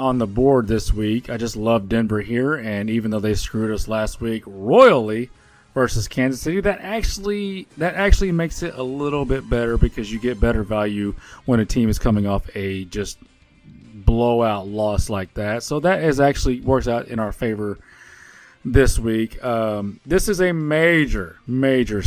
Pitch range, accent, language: 105-135 Hz, American, English